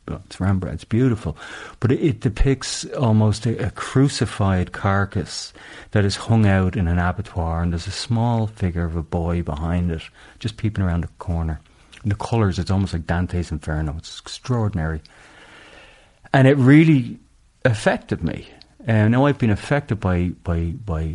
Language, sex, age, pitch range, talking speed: English, male, 40-59, 85-110 Hz, 170 wpm